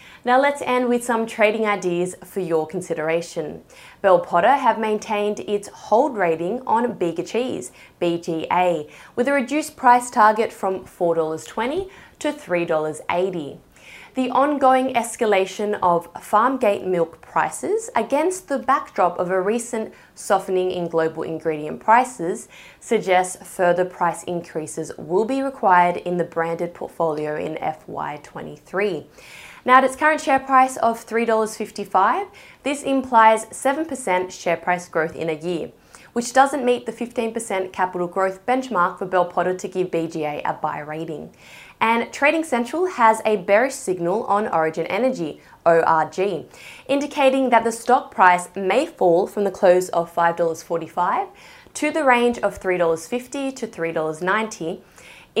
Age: 20-39